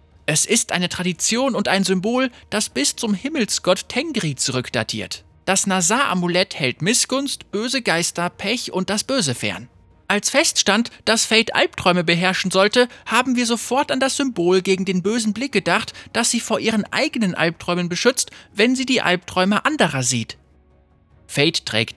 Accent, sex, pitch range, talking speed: German, male, 120-195 Hz, 160 wpm